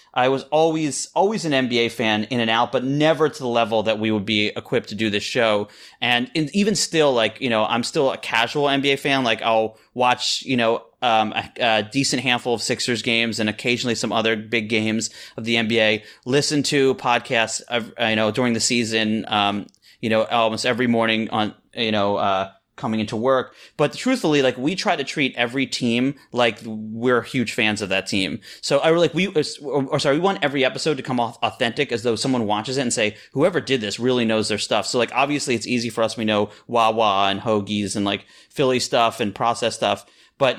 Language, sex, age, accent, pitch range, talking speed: English, male, 30-49, American, 110-135 Hz, 215 wpm